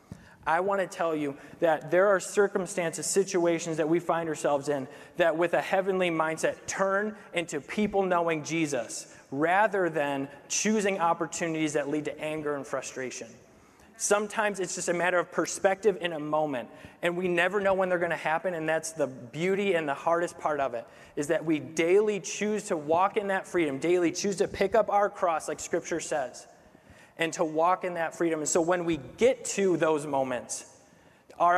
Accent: American